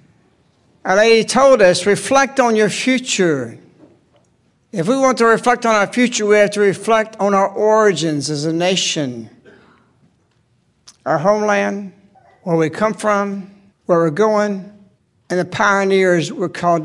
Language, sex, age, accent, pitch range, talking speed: English, male, 60-79, American, 170-220 Hz, 145 wpm